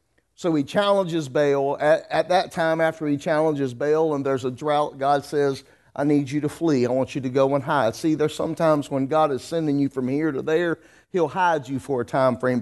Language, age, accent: English, 40-59, American